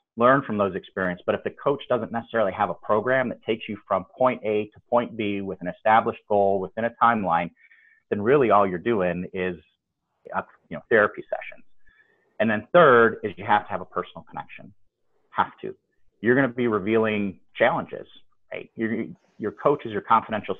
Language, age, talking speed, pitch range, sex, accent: English, 30-49, 190 wpm, 90-120 Hz, male, American